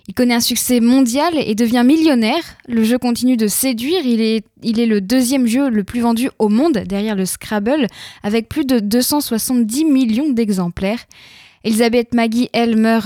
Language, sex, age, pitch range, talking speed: French, female, 10-29, 220-265 Hz, 170 wpm